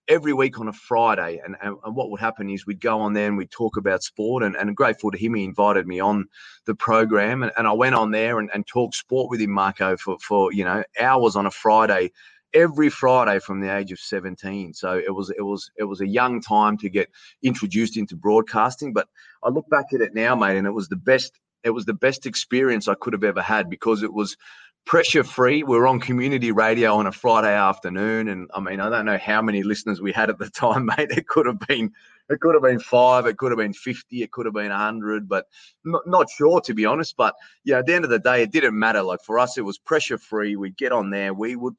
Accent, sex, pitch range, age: Australian, male, 100-125 Hz, 30-49